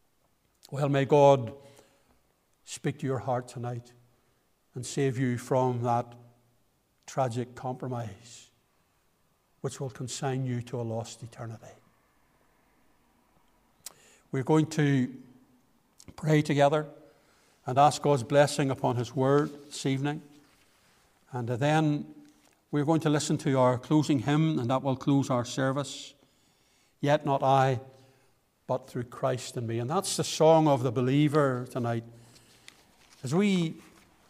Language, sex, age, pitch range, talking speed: English, male, 60-79, 125-145 Hz, 125 wpm